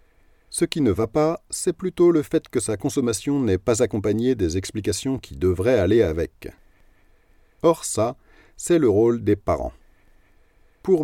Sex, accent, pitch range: male, French, 95-135 Hz